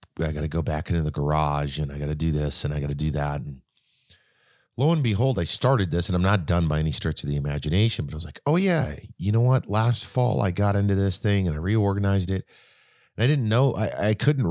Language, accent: English, American